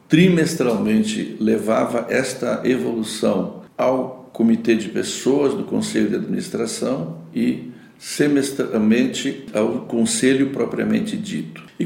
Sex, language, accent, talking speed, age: male, Portuguese, Brazilian, 95 wpm, 60-79